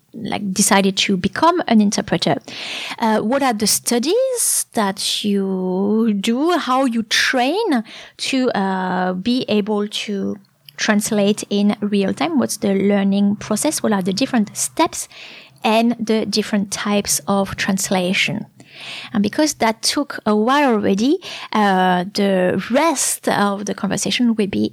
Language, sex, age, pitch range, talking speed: English, female, 20-39, 200-245 Hz, 135 wpm